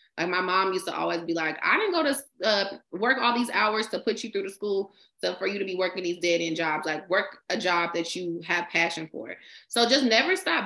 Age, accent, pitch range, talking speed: 20-39, American, 170-210 Hz, 260 wpm